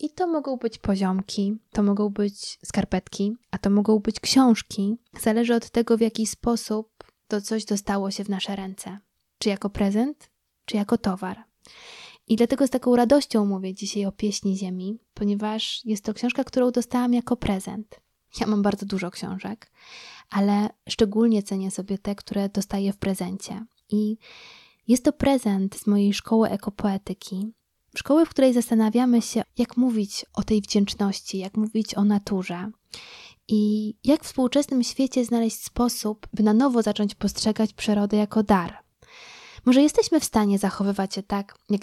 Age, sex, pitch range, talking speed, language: 20-39, female, 200-235 Hz, 160 wpm, Polish